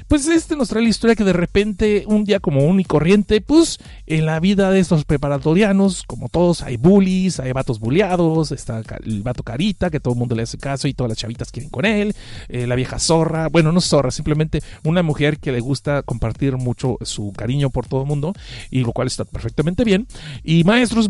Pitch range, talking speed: 125-185 Hz, 215 wpm